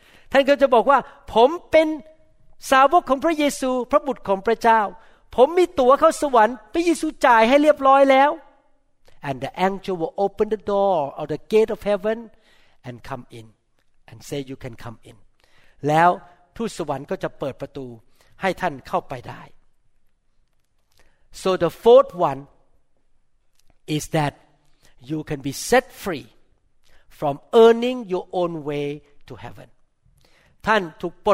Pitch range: 140-205 Hz